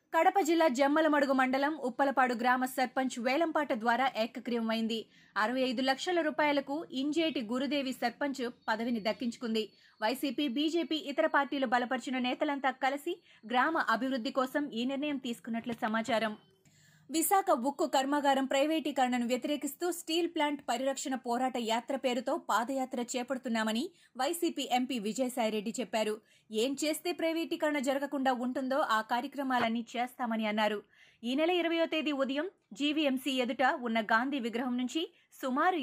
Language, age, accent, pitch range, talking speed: Telugu, 20-39, native, 235-295 Hz, 110 wpm